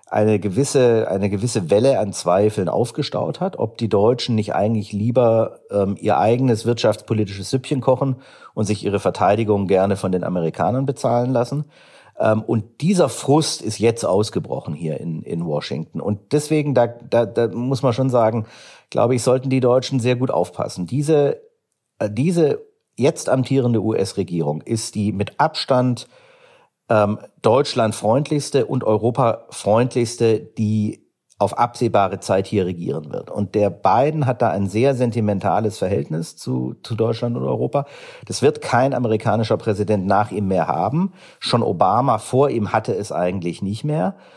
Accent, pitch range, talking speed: German, 105-135 Hz, 155 wpm